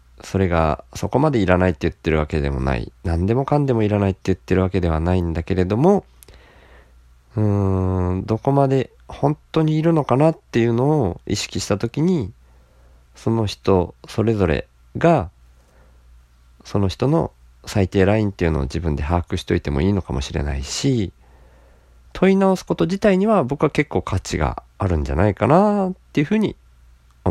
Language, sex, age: Japanese, male, 40-59